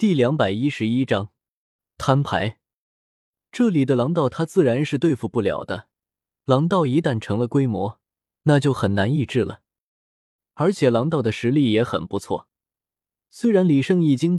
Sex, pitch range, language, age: male, 105-160 Hz, Chinese, 20-39